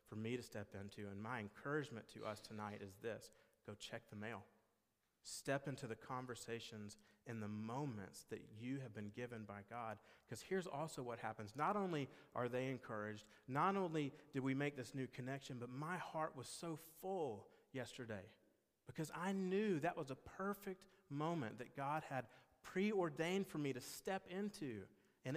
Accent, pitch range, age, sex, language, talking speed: American, 115-160 Hz, 40-59, male, English, 175 wpm